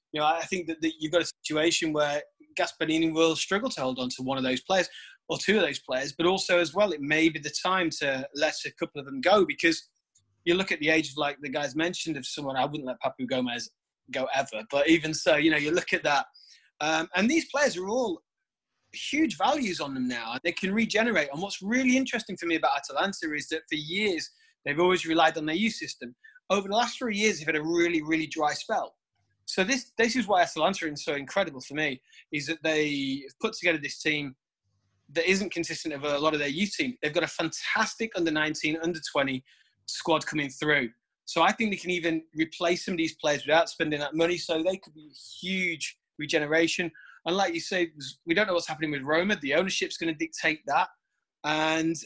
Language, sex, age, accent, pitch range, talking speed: English, male, 30-49, British, 150-195 Hz, 220 wpm